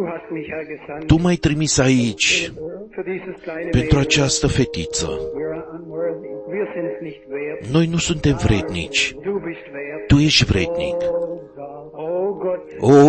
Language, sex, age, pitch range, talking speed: Romanian, male, 50-69, 125-170 Hz, 70 wpm